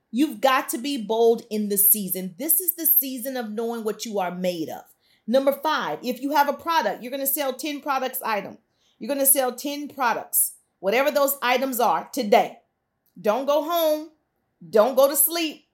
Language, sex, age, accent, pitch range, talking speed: English, female, 40-59, American, 230-285 Hz, 195 wpm